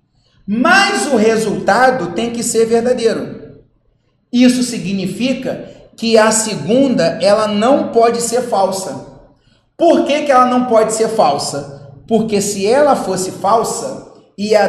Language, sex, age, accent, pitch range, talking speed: Portuguese, male, 40-59, Brazilian, 195-265 Hz, 125 wpm